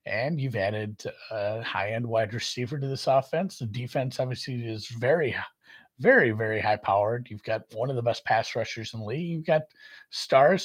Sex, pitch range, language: male, 115-165 Hz, English